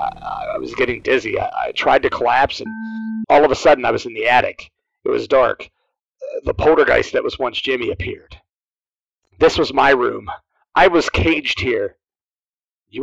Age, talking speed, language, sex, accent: 40-59, 170 wpm, English, male, American